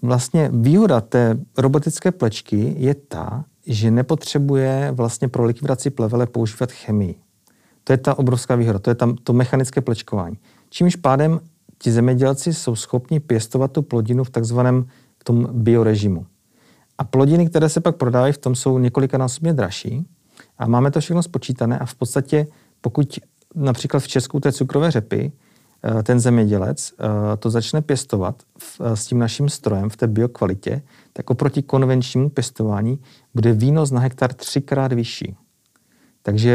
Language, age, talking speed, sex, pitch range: Czech, 40-59, 150 wpm, male, 115-140 Hz